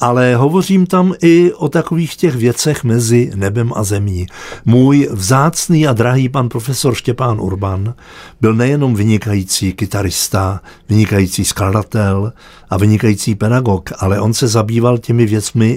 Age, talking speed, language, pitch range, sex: 50-69, 135 wpm, Czech, 95-120 Hz, male